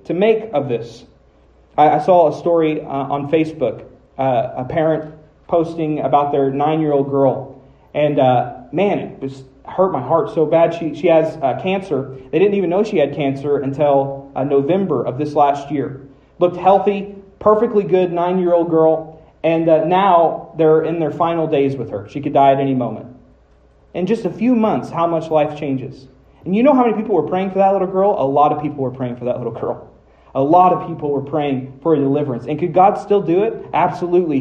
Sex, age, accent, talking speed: male, 40-59, American, 210 wpm